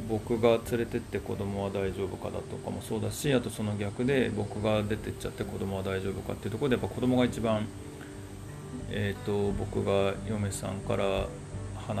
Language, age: Japanese, 20-39